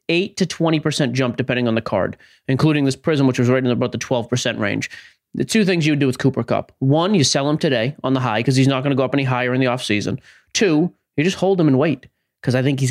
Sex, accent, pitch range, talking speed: male, American, 120-155 Hz, 275 wpm